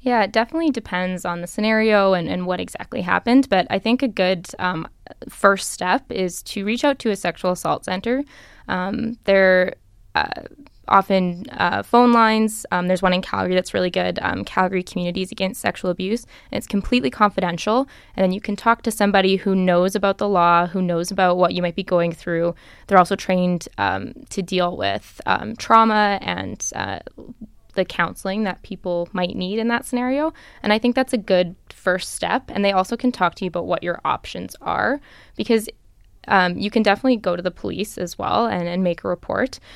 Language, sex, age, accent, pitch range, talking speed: English, female, 10-29, American, 180-215 Hz, 200 wpm